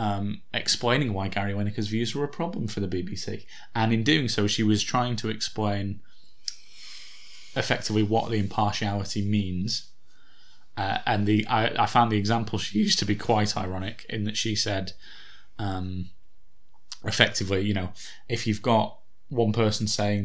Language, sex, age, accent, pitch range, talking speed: English, male, 20-39, British, 100-115 Hz, 160 wpm